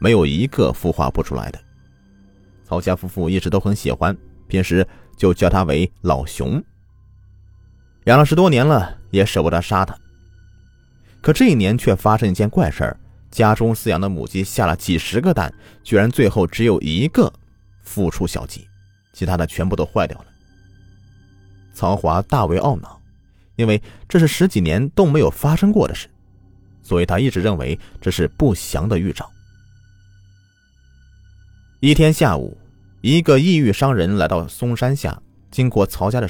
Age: 30-49